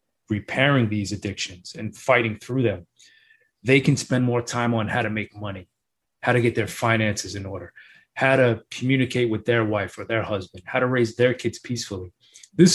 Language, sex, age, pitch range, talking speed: English, male, 30-49, 110-130 Hz, 190 wpm